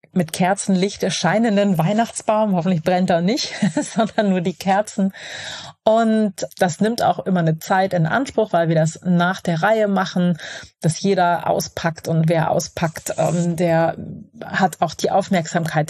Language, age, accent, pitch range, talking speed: German, 30-49, German, 165-200 Hz, 145 wpm